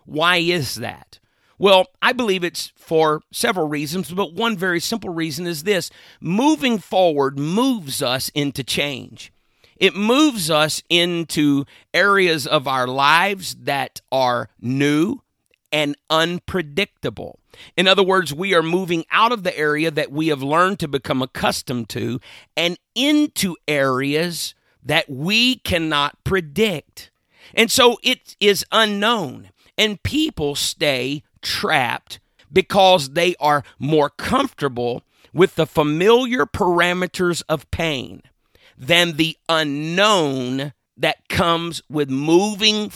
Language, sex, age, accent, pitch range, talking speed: English, male, 50-69, American, 145-190 Hz, 125 wpm